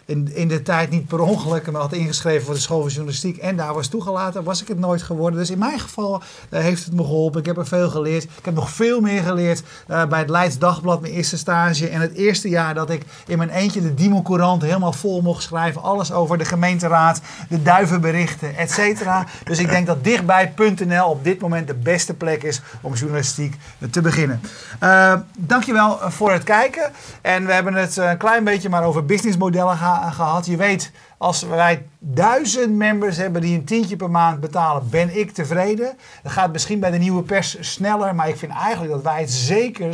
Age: 50-69